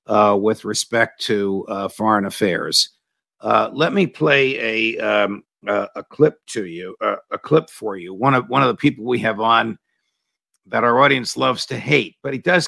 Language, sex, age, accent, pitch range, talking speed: English, male, 50-69, American, 110-125 Hz, 195 wpm